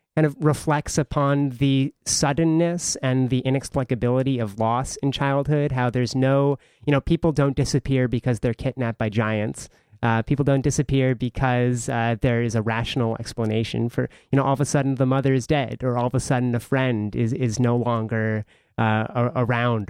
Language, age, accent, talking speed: English, 30-49, American, 185 wpm